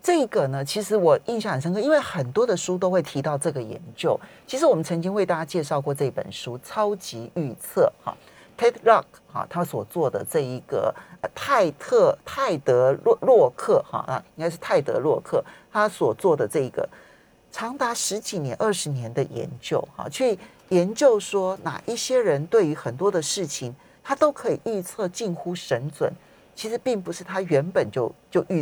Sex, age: male, 50-69